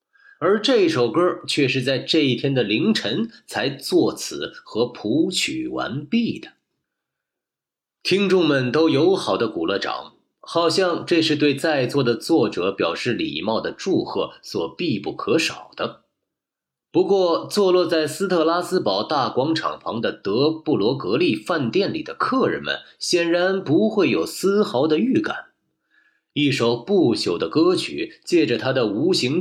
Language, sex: Chinese, male